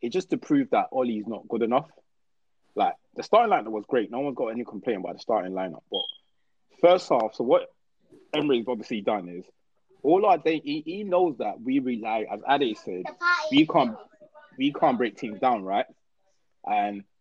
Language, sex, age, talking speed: English, male, 20-39, 190 wpm